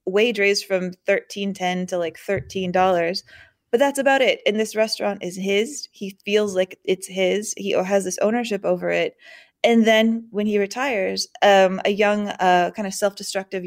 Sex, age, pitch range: female, 20-39, 185-220 Hz